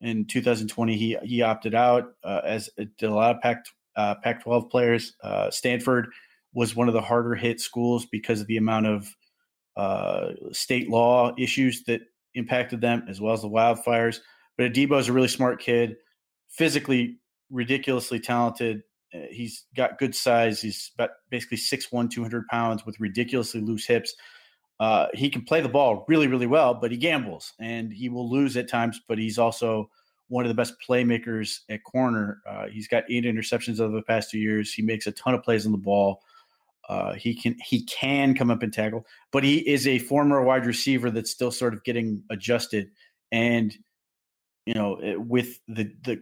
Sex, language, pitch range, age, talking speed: male, English, 110-125 Hz, 30-49, 185 wpm